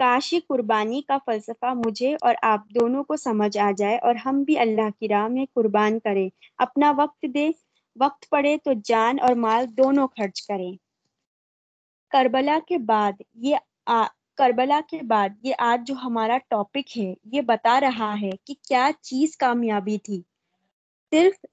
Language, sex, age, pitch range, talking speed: Urdu, female, 20-39, 215-275 Hz, 155 wpm